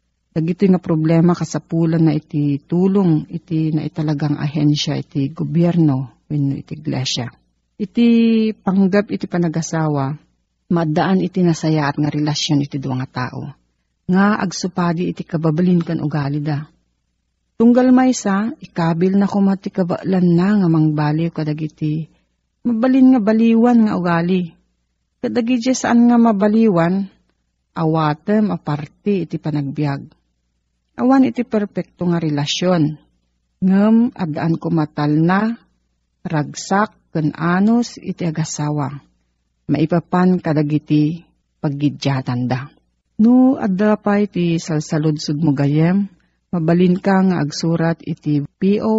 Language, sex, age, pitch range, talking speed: Filipino, female, 40-59, 145-190 Hz, 105 wpm